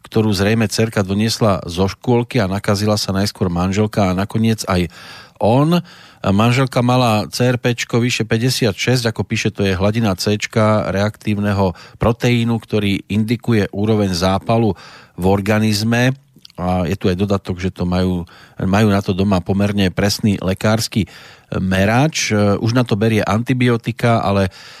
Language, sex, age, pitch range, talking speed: Slovak, male, 40-59, 100-120 Hz, 135 wpm